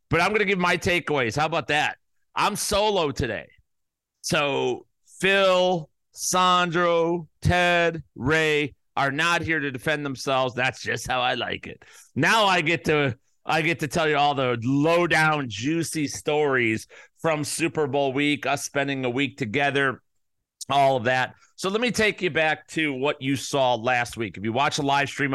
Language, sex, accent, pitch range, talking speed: English, male, American, 125-155 Hz, 180 wpm